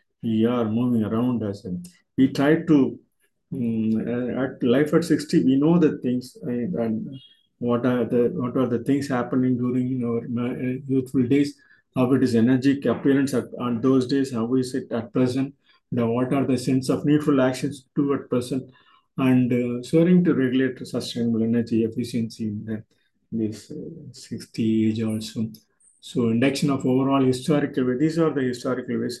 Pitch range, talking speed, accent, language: 115-135 Hz, 170 wpm, native, Tamil